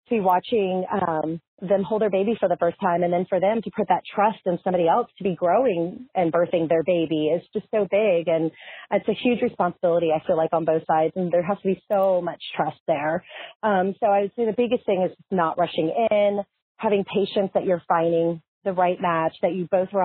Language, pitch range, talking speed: English, 170-200 Hz, 225 wpm